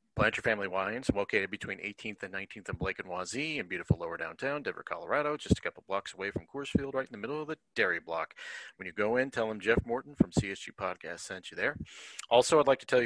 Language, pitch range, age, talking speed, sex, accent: English, 110-150 Hz, 40-59, 250 wpm, male, American